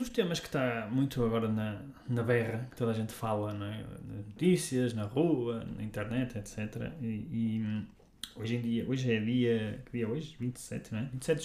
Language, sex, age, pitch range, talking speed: Portuguese, male, 20-39, 115-150 Hz, 195 wpm